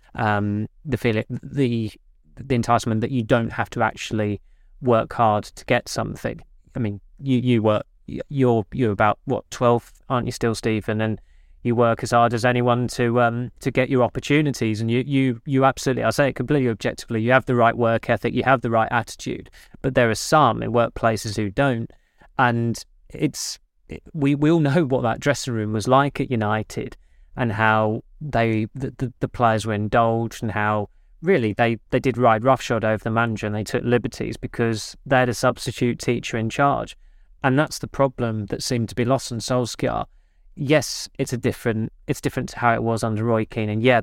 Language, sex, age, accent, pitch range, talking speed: English, male, 20-39, British, 110-130 Hz, 200 wpm